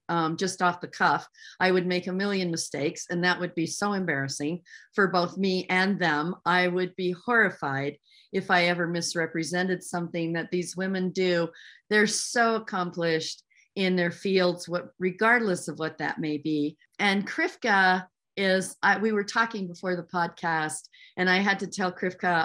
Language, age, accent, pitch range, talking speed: English, 40-59, American, 165-200 Hz, 170 wpm